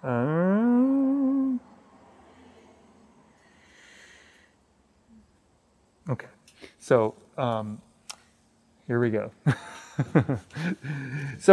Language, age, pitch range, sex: English, 30-49, 115-155 Hz, male